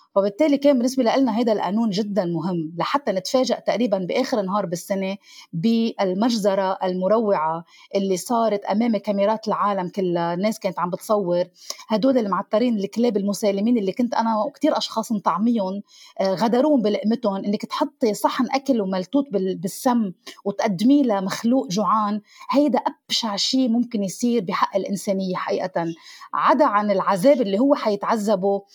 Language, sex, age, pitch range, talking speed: Arabic, female, 30-49, 195-255 Hz, 125 wpm